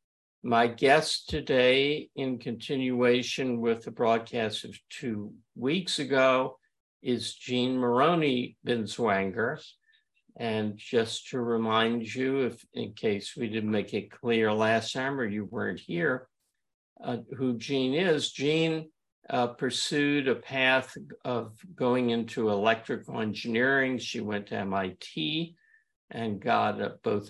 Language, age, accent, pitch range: English, 50-69, American, 110-130 Hz